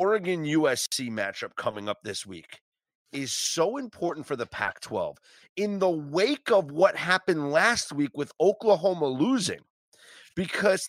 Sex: male